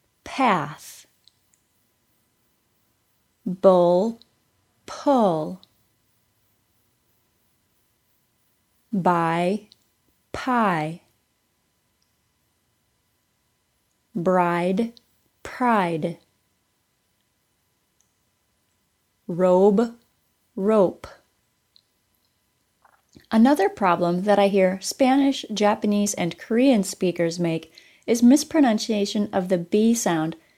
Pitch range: 175-235 Hz